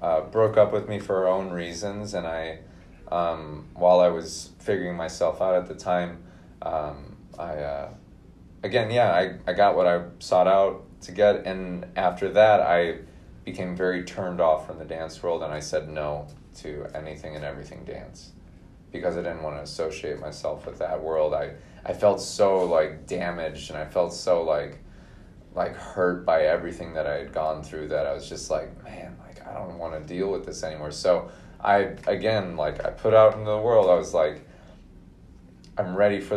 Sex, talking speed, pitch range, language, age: male, 190 wpm, 80-95 Hz, English, 20-39